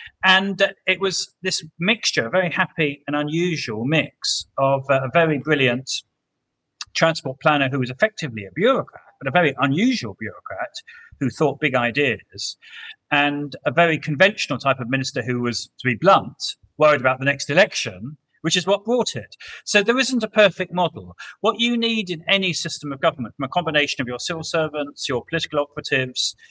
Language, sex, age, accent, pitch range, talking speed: English, male, 40-59, British, 125-180 Hz, 175 wpm